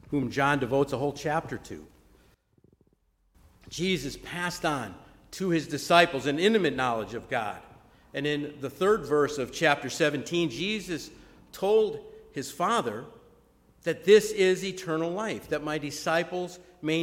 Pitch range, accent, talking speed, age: 140-175 Hz, American, 135 wpm, 50-69